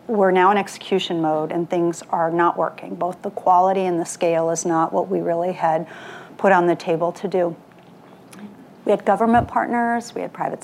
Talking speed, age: 195 wpm, 40-59